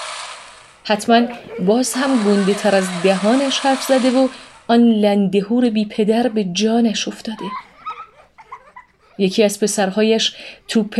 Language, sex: Persian, female